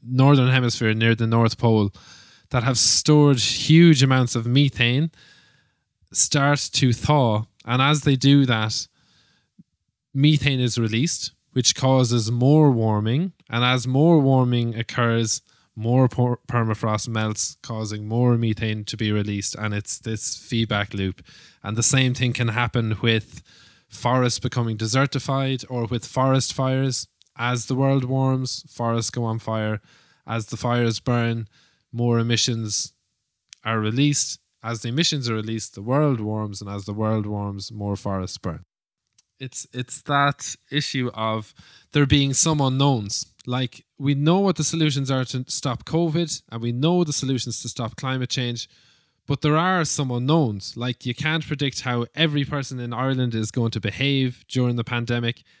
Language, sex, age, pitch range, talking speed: English, male, 20-39, 110-140 Hz, 155 wpm